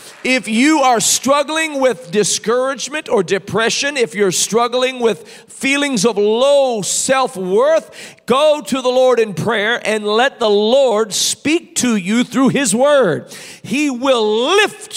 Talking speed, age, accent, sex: 140 wpm, 40-59, American, male